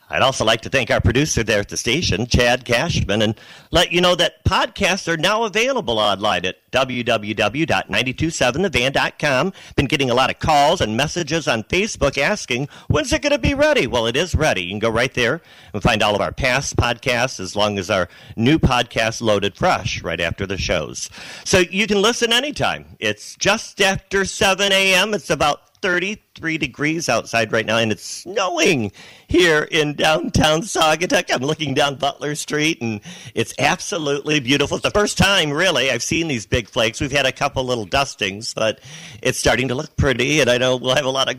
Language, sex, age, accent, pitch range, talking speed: English, male, 50-69, American, 110-165 Hz, 195 wpm